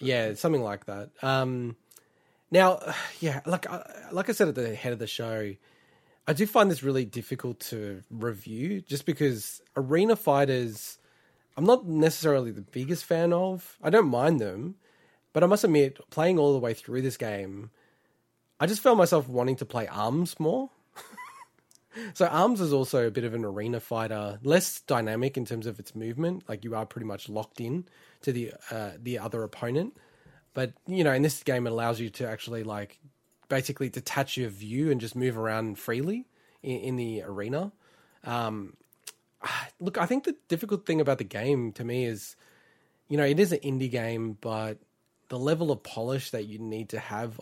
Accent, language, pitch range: Australian, English, 115-160 Hz